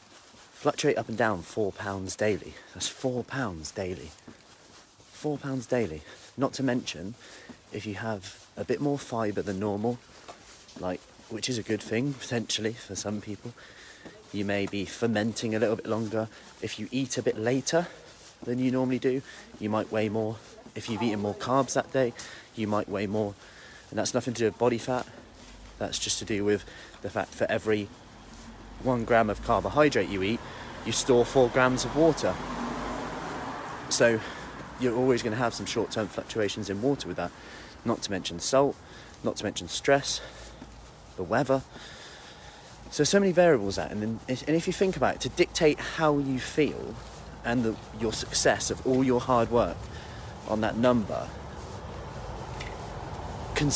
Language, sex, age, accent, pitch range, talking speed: English, male, 30-49, British, 105-130 Hz, 170 wpm